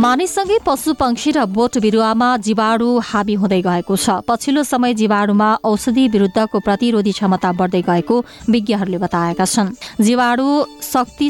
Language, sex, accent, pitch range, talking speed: English, female, Indian, 195-235 Hz, 115 wpm